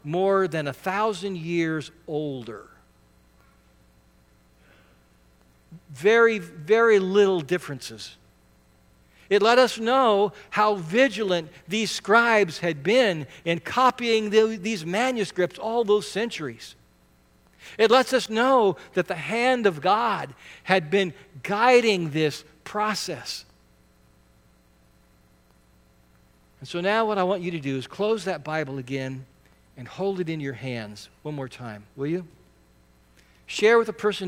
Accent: American